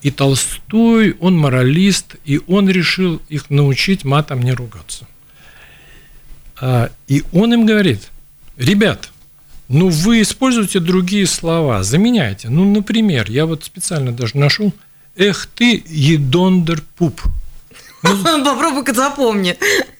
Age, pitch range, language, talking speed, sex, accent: 50-69, 135-190 Hz, Russian, 110 wpm, male, native